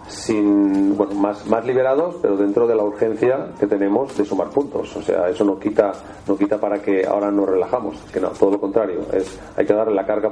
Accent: Spanish